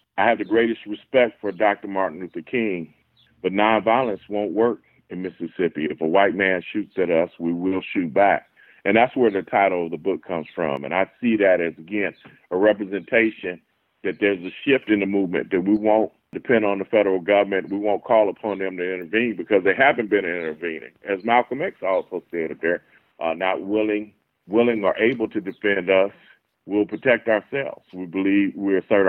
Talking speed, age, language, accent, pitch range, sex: 195 wpm, 40-59, English, American, 95-110 Hz, male